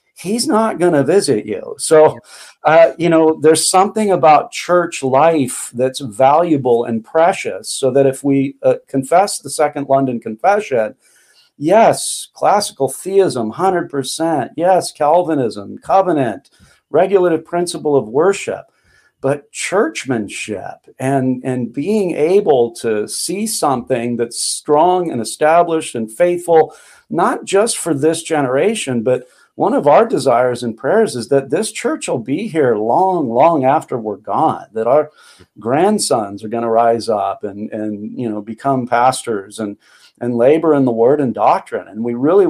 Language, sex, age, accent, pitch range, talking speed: English, male, 50-69, American, 130-175 Hz, 145 wpm